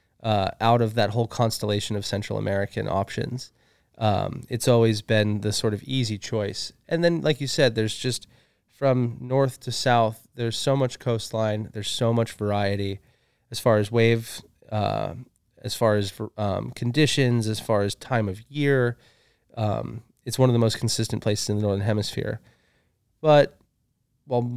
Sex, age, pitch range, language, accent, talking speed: male, 20-39, 105-125 Hz, English, American, 165 wpm